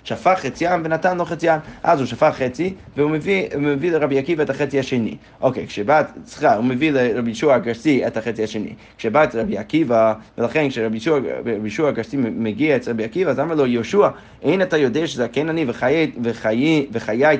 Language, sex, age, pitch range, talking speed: Hebrew, male, 30-49, 120-160 Hz, 185 wpm